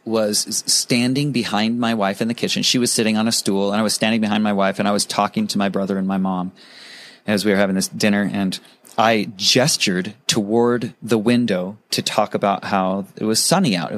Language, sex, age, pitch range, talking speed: English, male, 30-49, 110-160 Hz, 225 wpm